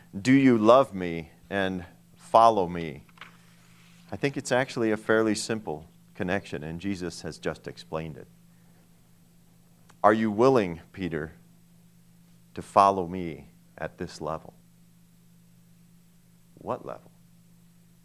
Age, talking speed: 40-59, 110 wpm